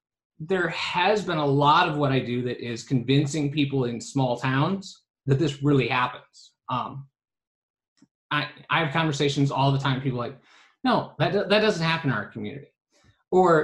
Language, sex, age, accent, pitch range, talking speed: English, male, 30-49, American, 130-165 Hz, 185 wpm